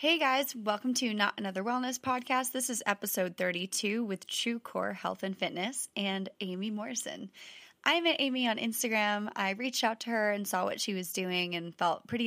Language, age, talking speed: English, 20-39, 195 wpm